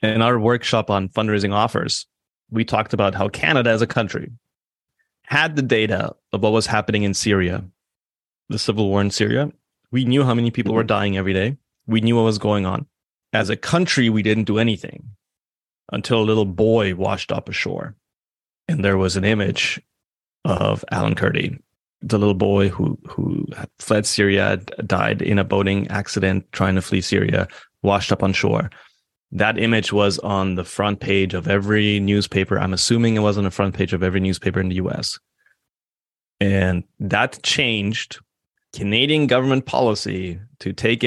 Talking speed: 170 wpm